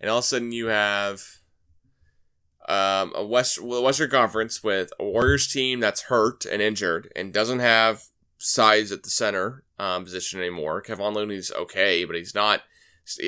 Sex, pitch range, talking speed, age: male, 95-120 Hz, 170 wpm, 20-39